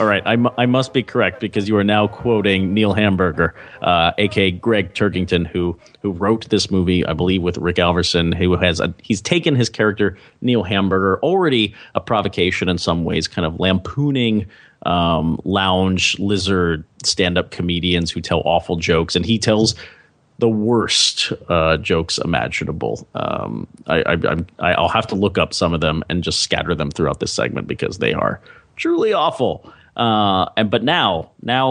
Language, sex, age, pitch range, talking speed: English, male, 30-49, 90-110 Hz, 180 wpm